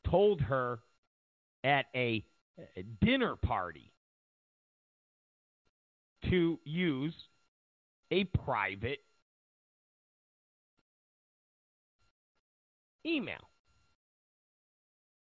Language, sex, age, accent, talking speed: English, male, 50-69, American, 45 wpm